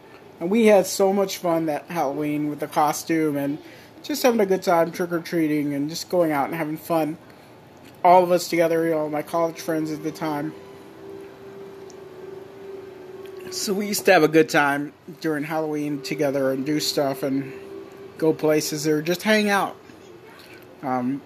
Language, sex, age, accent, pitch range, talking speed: English, male, 40-59, American, 155-190 Hz, 165 wpm